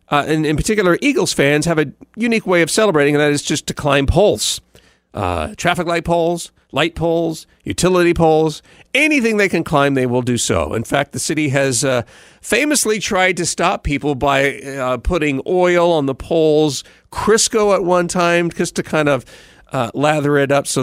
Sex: male